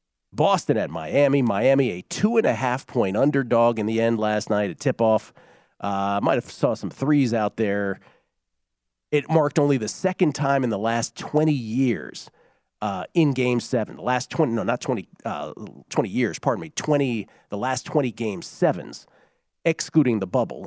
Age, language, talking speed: 40-59, English, 165 wpm